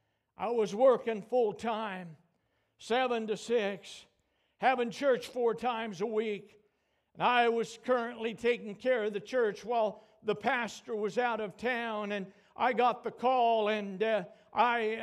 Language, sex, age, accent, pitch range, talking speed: English, male, 60-79, American, 215-250 Hz, 150 wpm